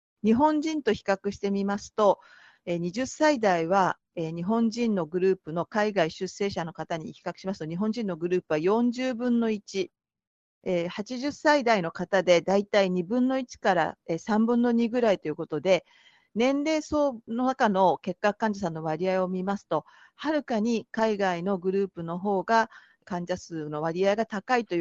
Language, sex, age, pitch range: Japanese, female, 40-59, 175-230 Hz